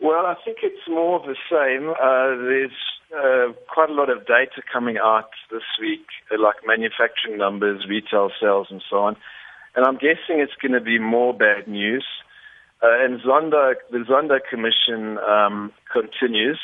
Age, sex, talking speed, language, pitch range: 50-69, male, 165 wpm, English, 115-150 Hz